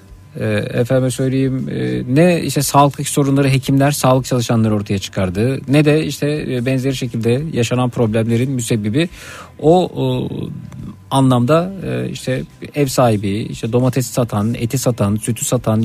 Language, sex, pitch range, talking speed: Turkish, male, 110-155 Hz, 120 wpm